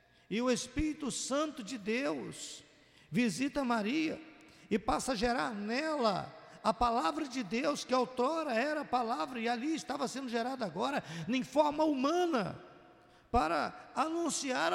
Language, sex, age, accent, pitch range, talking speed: Portuguese, male, 50-69, Brazilian, 220-290 Hz, 135 wpm